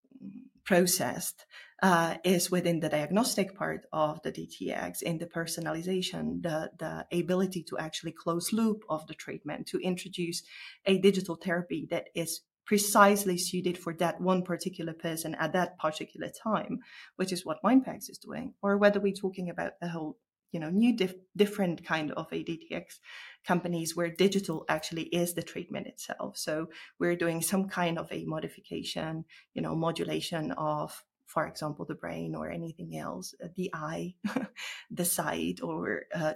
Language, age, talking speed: English, 20-39, 155 wpm